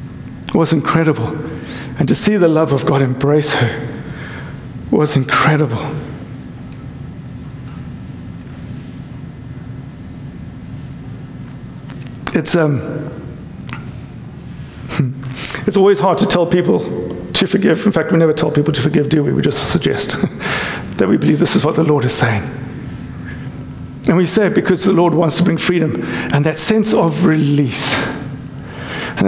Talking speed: 130 wpm